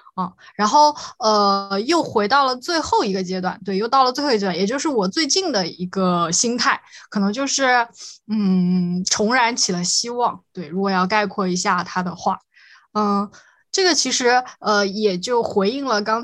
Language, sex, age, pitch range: Chinese, female, 20-39, 195-255 Hz